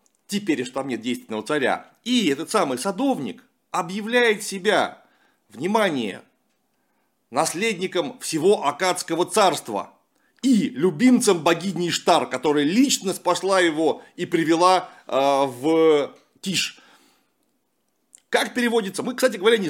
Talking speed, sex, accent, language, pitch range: 110 wpm, male, native, Russian, 160-245 Hz